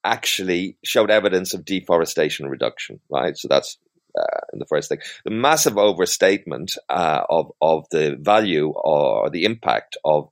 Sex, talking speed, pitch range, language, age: male, 150 wpm, 95-125 Hz, English, 40-59